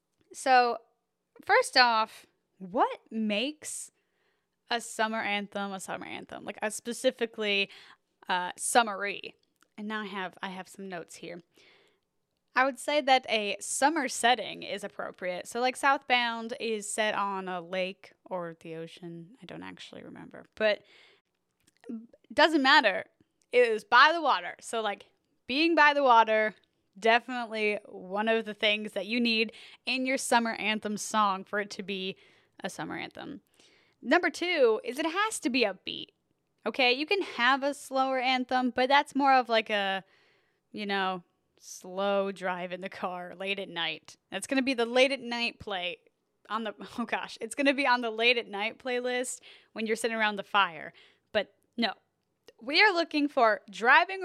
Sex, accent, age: female, American, 10-29